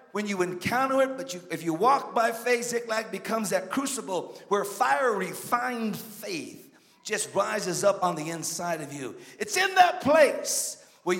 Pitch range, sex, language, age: 180-230 Hz, male, English, 50-69